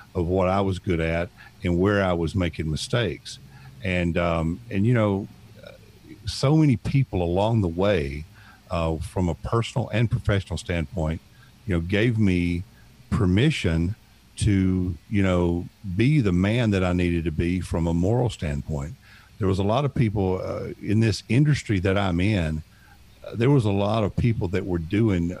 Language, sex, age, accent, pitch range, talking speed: English, male, 50-69, American, 85-105 Hz, 170 wpm